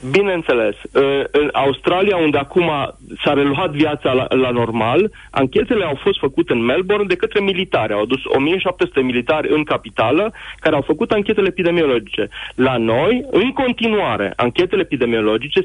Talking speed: 140 wpm